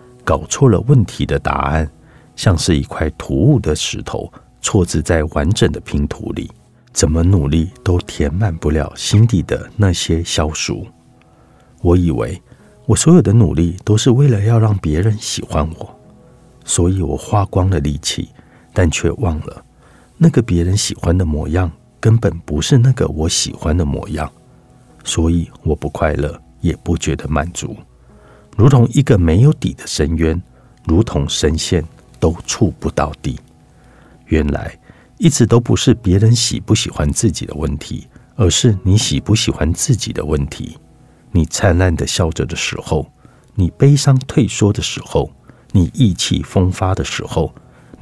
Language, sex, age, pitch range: Chinese, male, 50-69, 80-115 Hz